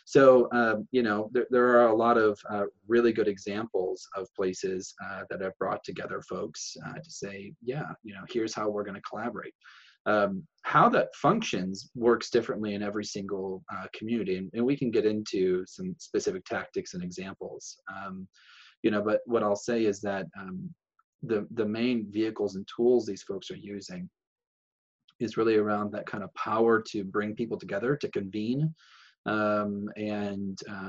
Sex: male